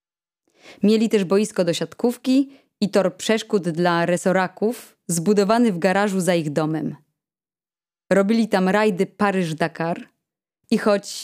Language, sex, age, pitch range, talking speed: Polish, female, 20-39, 175-225 Hz, 115 wpm